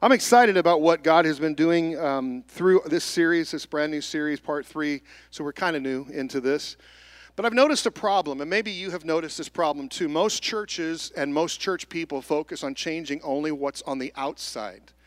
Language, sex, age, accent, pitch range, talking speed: English, male, 40-59, American, 130-205 Hz, 205 wpm